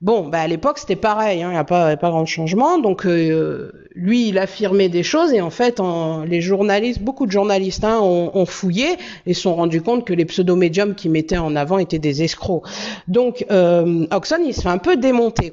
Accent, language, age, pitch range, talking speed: French, French, 50-69, 175-240 Hz, 220 wpm